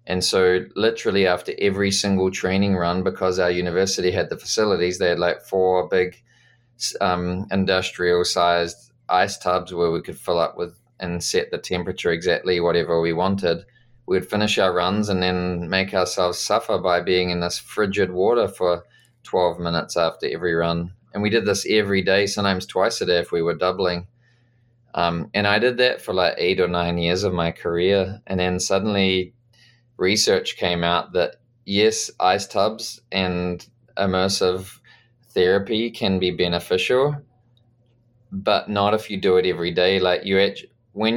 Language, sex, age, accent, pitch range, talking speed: English, male, 20-39, Australian, 90-115 Hz, 165 wpm